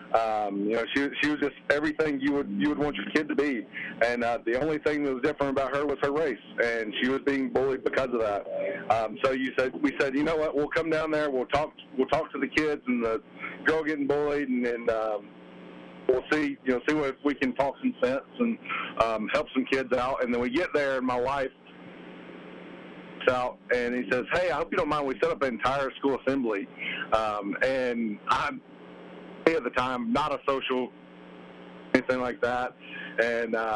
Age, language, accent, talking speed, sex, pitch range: 50-69, English, American, 215 wpm, male, 115-145 Hz